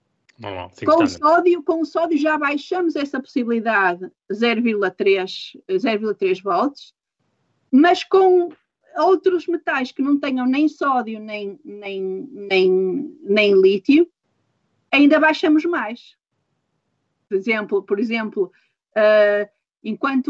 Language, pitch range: Portuguese, 210-290 Hz